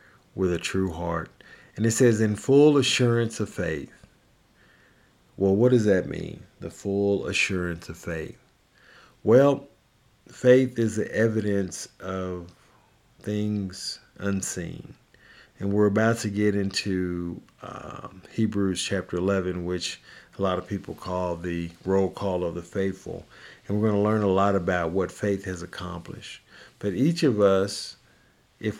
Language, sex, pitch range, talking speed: English, male, 90-105 Hz, 145 wpm